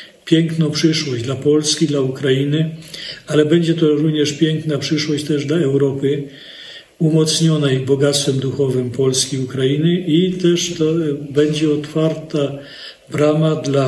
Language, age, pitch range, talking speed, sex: Polish, 40-59, 130-155 Hz, 120 wpm, male